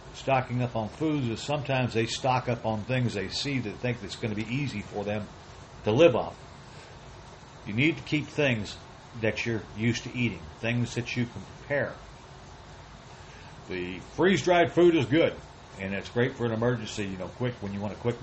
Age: 60-79